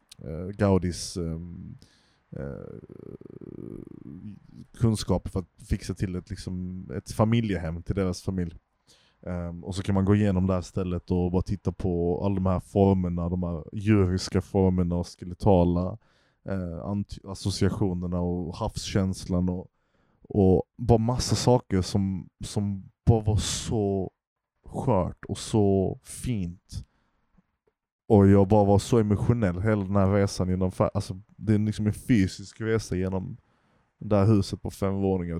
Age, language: 20-39, Swedish